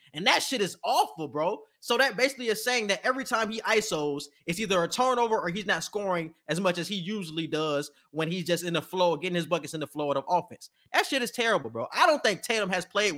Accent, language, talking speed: American, English, 255 wpm